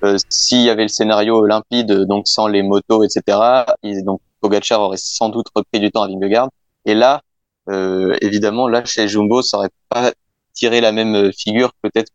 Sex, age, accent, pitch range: male, 20-39, French, 105-120 Hz